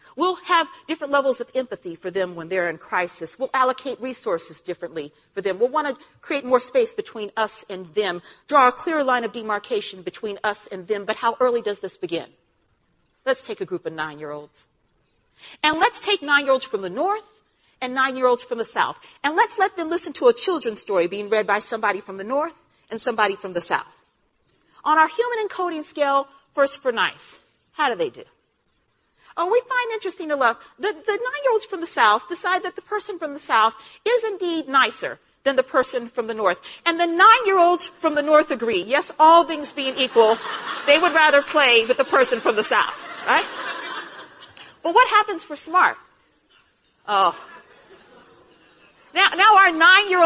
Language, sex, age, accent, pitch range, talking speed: English, female, 40-59, American, 225-360 Hz, 190 wpm